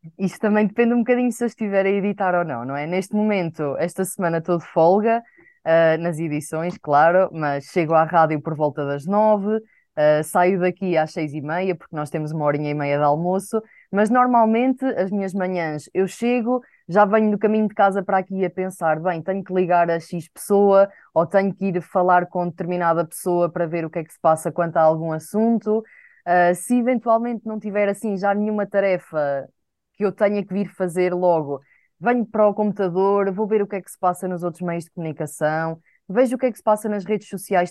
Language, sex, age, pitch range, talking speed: Portuguese, female, 20-39, 170-215 Hz, 210 wpm